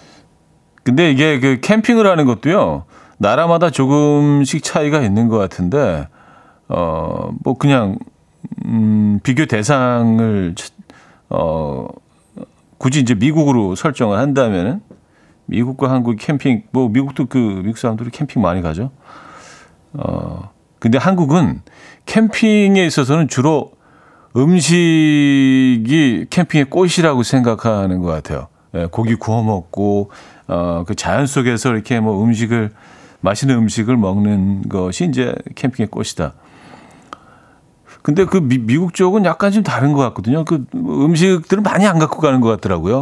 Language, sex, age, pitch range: Korean, male, 40-59, 105-145 Hz